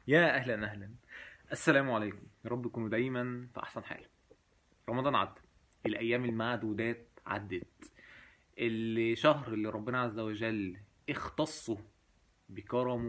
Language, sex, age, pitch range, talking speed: Arabic, male, 20-39, 105-130 Hz, 105 wpm